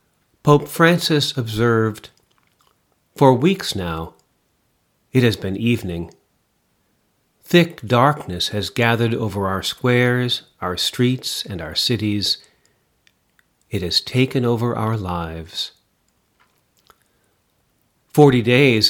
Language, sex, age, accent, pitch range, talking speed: English, male, 40-59, American, 110-140 Hz, 95 wpm